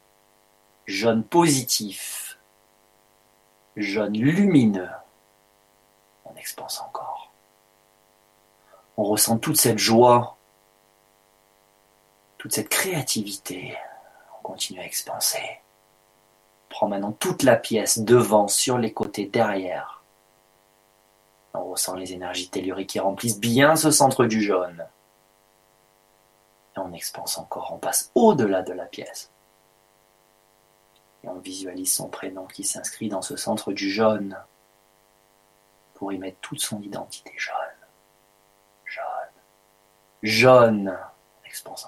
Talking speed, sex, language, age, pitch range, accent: 100 wpm, male, French, 40-59, 95-110 Hz, French